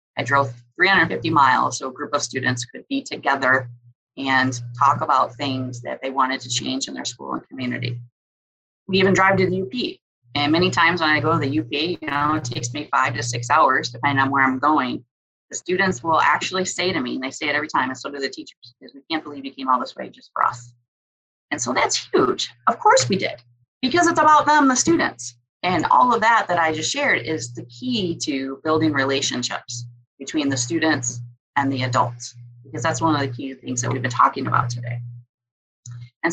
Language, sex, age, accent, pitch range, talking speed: Polish, female, 30-49, American, 120-160 Hz, 220 wpm